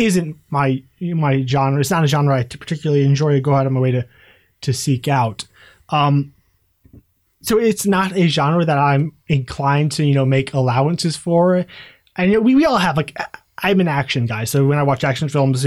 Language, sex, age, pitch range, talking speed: English, male, 20-39, 140-185 Hz, 205 wpm